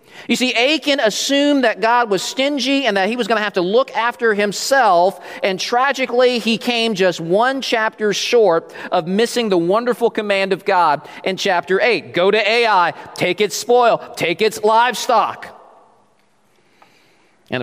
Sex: male